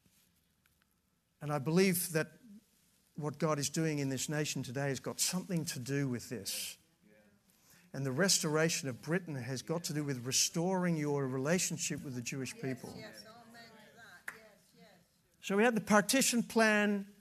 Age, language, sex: 50-69, English, male